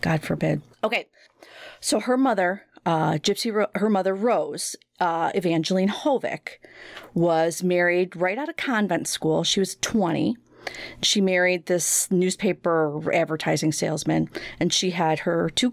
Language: English